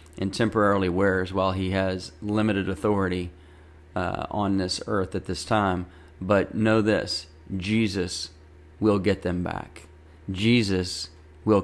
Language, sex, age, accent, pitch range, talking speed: English, male, 30-49, American, 85-100 Hz, 130 wpm